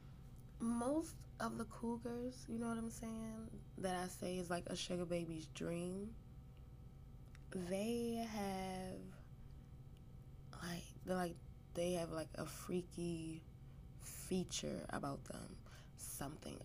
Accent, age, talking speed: American, 20-39, 115 wpm